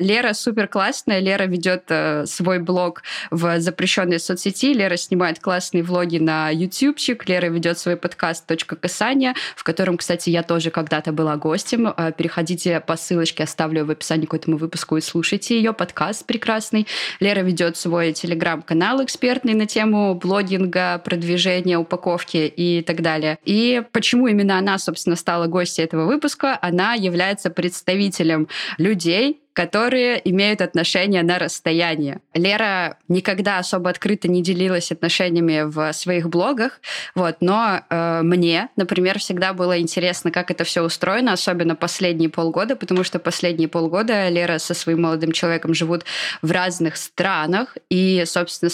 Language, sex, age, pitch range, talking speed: Russian, female, 20-39, 165-195 Hz, 140 wpm